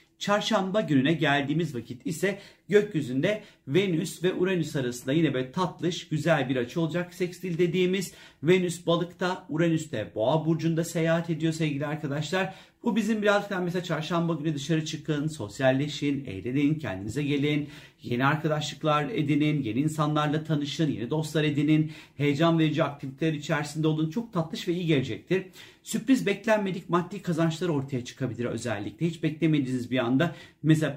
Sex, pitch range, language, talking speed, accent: male, 145-185 Hz, Turkish, 140 wpm, native